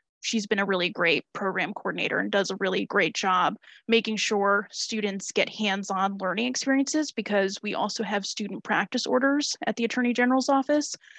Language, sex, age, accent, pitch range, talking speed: English, female, 20-39, American, 200-255 Hz, 175 wpm